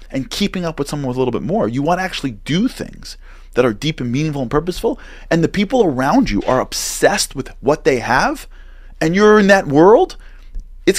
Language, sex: English, male